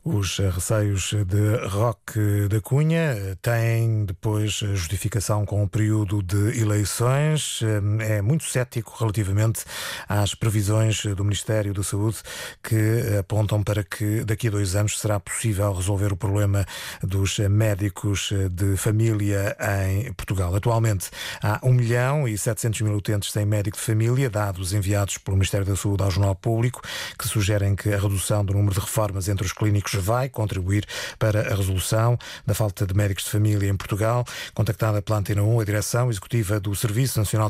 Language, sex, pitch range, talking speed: Portuguese, male, 105-120 Hz, 160 wpm